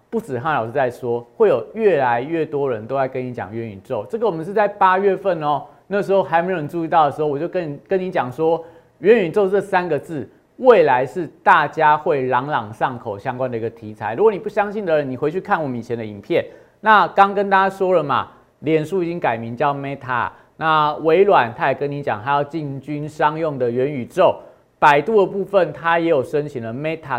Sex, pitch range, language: male, 135-185 Hz, Chinese